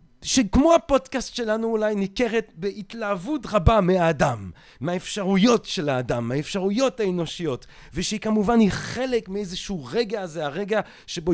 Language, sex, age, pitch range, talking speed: Hebrew, male, 30-49, 165-220 Hz, 115 wpm